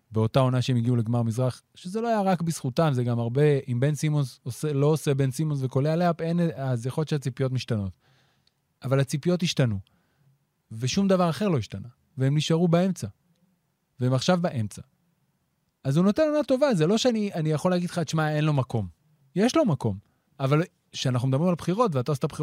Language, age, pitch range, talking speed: Hebrew, 20-39, 130-165 Hz, 180 wpm